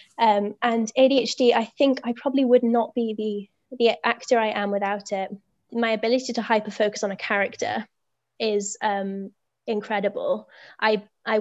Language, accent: English, British